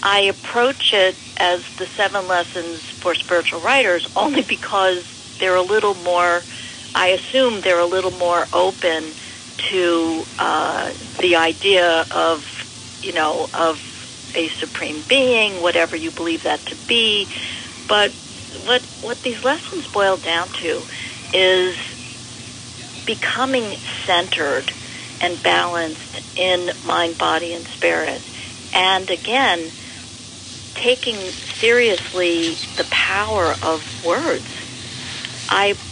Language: English